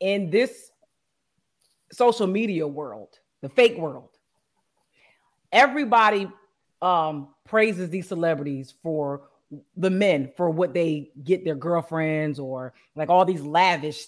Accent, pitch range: American, 150-190 Hz